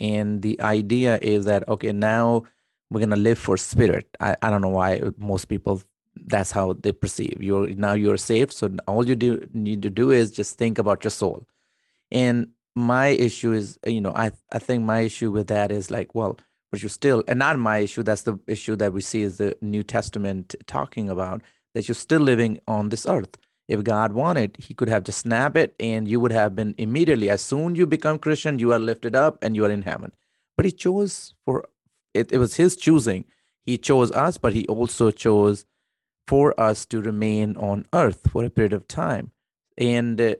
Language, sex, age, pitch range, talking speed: English, male, 30-49, 105-120 Hz, 210 wpm